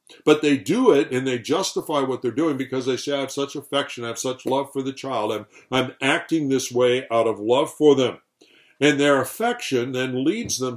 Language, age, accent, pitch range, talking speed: English, 60-79, American, 120-145 Hz, 225 wpm